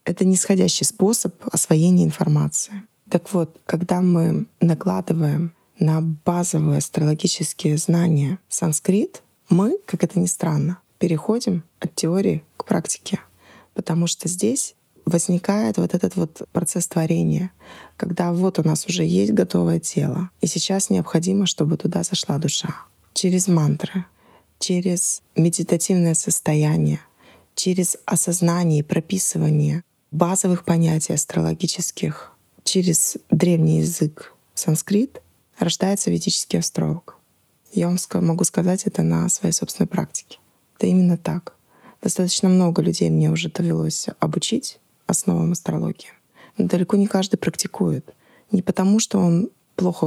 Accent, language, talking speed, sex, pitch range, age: native, Russian, 120 wpm, female, 160-190 Hz, 20-39